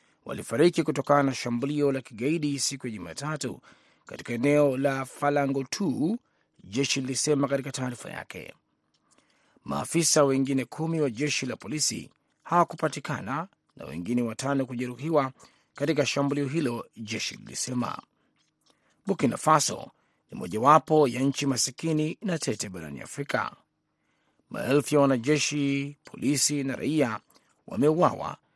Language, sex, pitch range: Swahili, male, 130-150 Hz